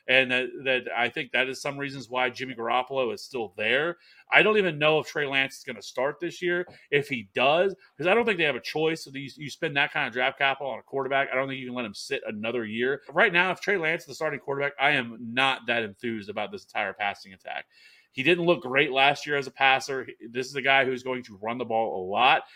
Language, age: English, 30-49